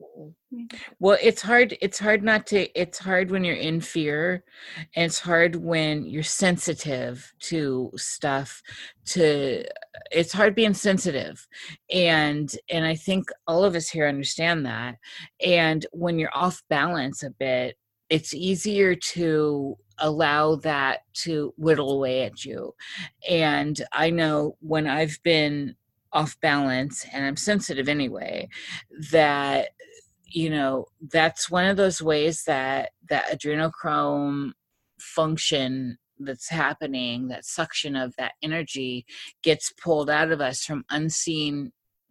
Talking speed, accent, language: 130 wpm, American, English